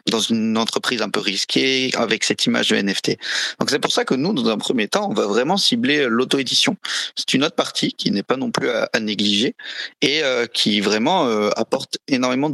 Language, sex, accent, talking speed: English, male, French, 215 wpm